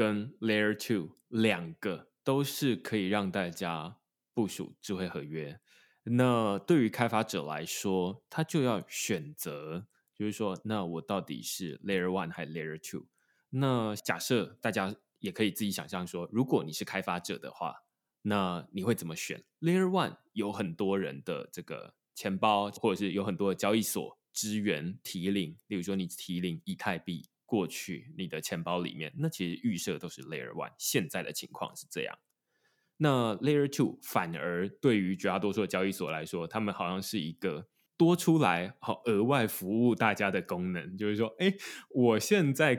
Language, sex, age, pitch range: Chinese, male, 20-39, 95-125 Hz